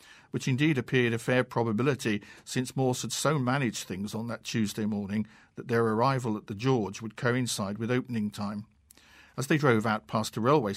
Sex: male